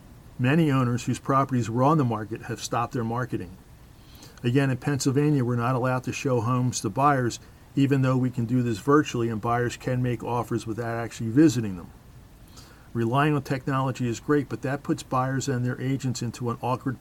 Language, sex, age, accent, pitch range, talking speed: English, male, 50-69, American, 120-145 Hz, 190 wpm